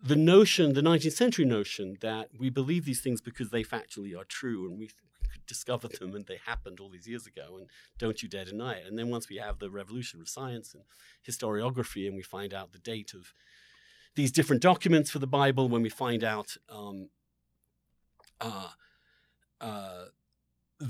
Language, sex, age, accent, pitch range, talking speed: English, male, 40-59, British, 100-130 Hz, 185 wpm